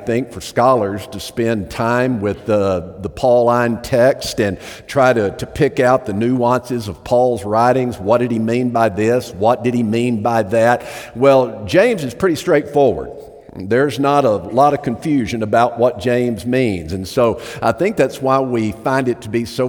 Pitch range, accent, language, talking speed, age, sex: 115-140 Hz, American, English, 185 wpm, 50-69, male